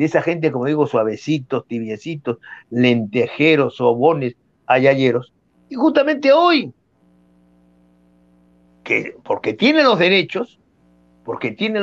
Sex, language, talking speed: male, Spanish, 100 wpm